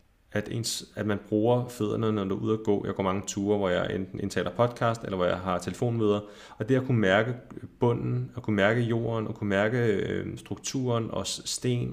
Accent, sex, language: native, male, Danish